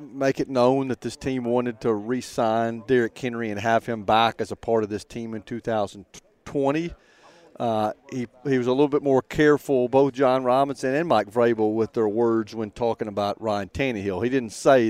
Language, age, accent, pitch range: English, 40-59, American, 110-125 Hz